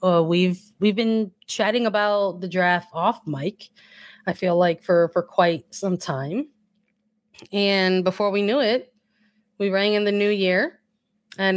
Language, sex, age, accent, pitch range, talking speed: English, female, 20-39, American, 175-210 Hz, 155 wpm